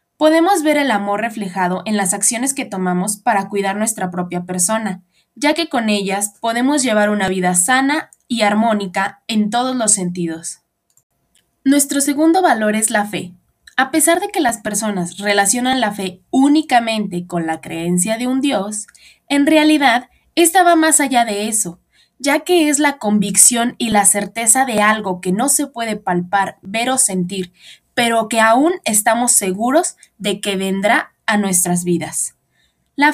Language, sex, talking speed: Spanish, female, 165 wpm